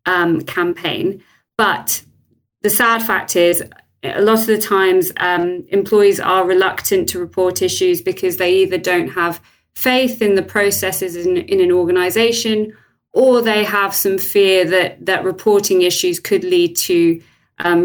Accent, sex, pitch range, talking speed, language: British, female, 185-245 Hz, 150 wpm, English